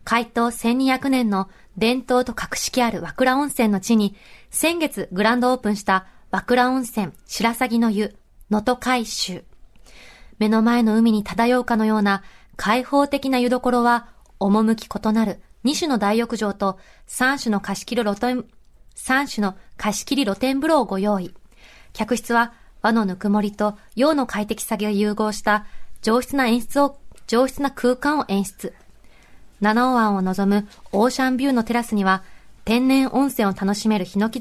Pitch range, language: 205-250 Hz, Japanese